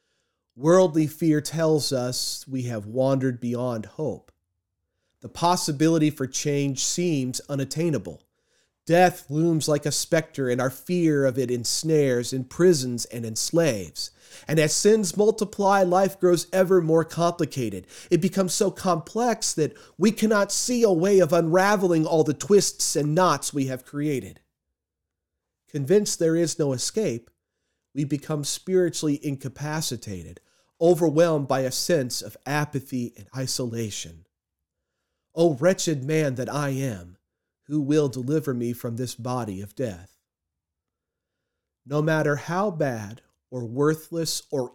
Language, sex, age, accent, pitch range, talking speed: English, male, 40-59, American, 125-165 Hz, 130 wpm